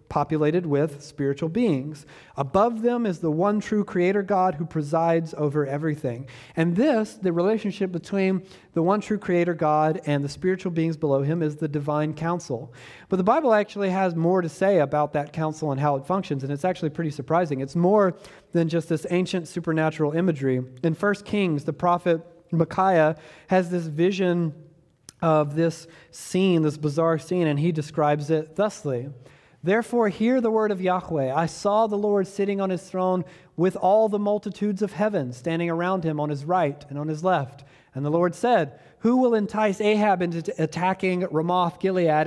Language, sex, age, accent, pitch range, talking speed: English, male, 30-49, American, 150-195 Hz, 175 wpm